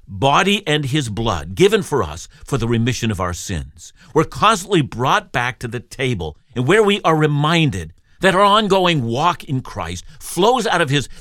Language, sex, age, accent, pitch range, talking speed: English, male, 50-69, American, 105-155 Hz, 185 wpm